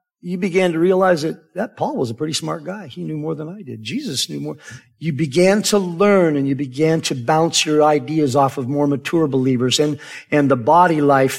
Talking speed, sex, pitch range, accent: 220 wpm, male, 140-190 Hz, American